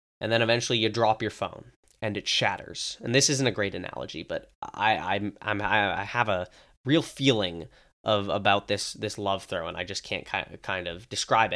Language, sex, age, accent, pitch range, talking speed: English, male, 10-29, American, 100-145 Hz, 200 wpm